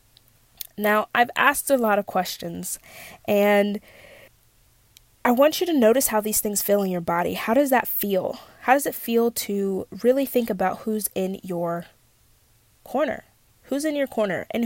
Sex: female